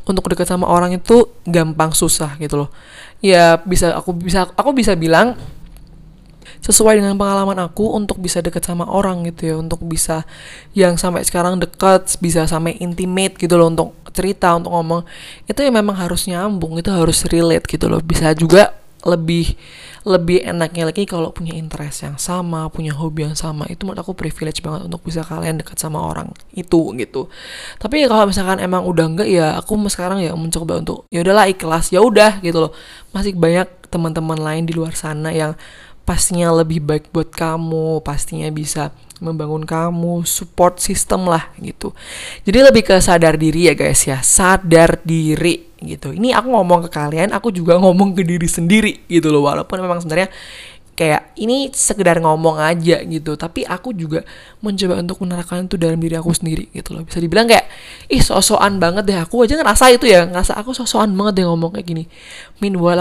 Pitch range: 160-190 Hz